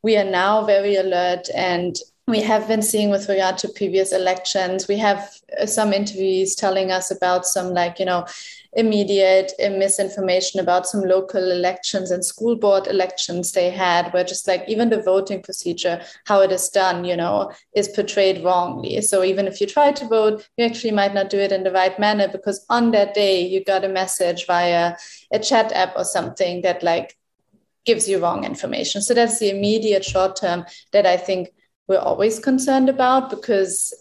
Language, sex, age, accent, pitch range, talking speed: English, female, 20-39, German, 185-215 Hz, 185 wpm